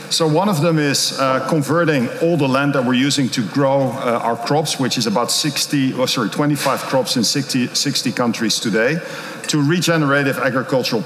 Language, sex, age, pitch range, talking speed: English, male, 50-69, 130-155 Hz, 170 wpm